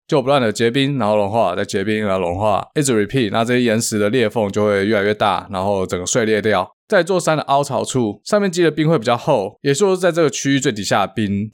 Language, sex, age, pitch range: Chinese, male, 20-39, 105-140 Hz